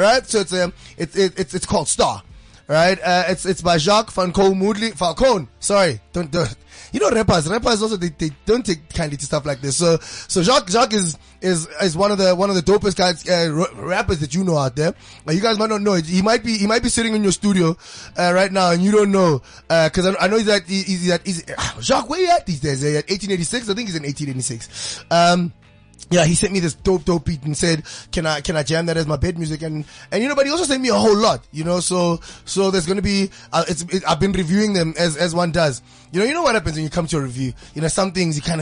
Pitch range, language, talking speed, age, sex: 165-210 Hz, English, 275 wpm, 20-39, male